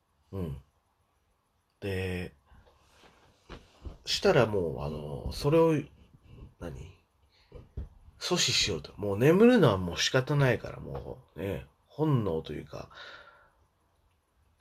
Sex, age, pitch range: male, 40-59, 90-140 Hz